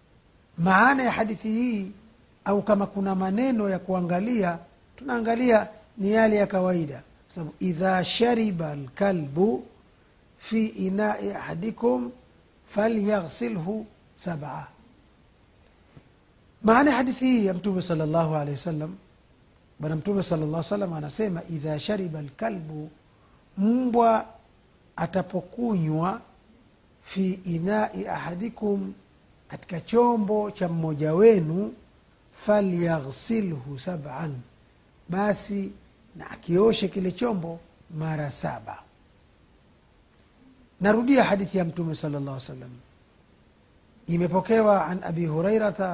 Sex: male